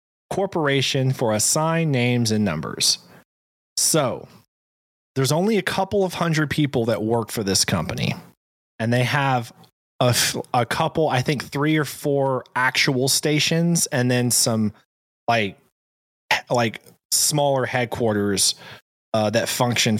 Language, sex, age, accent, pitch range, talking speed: English, male, 20-39, American, 105-140 Hz, 125 wpm